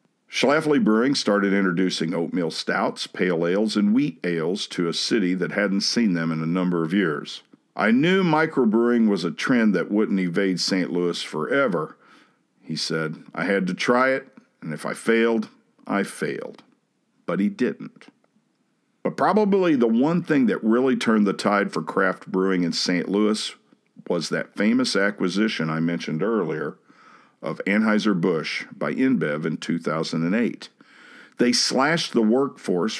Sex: male